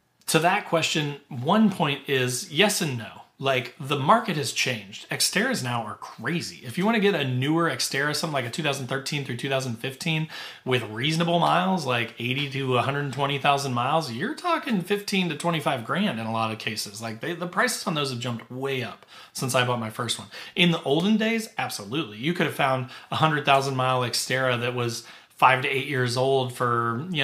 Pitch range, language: 125-160 Hz, English